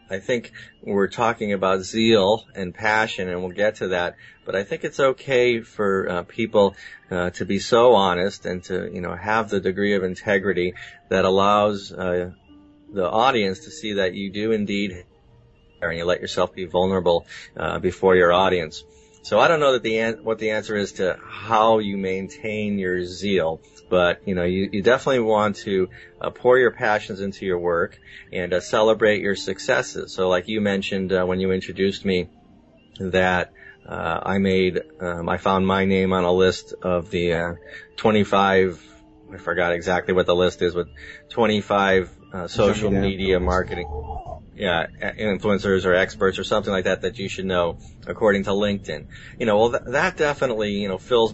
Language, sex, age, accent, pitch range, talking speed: English, male, 30-49, American, 90-105 Hz, 180 wpm